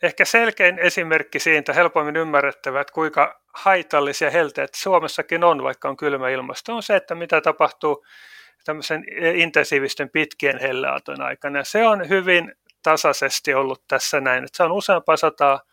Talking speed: 135 wpm